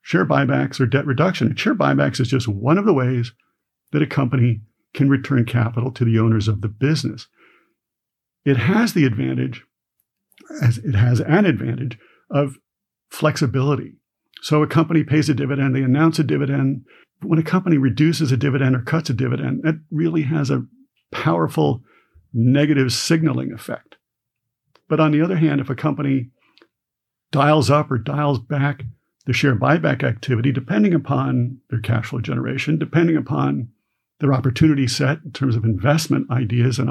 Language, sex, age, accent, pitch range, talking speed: English, male, 50-69, American, 125-150 Hz, 160 wpm